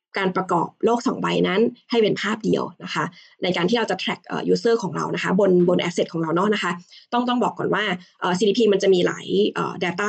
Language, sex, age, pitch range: Thai, female, 20-39, 185-230 Hz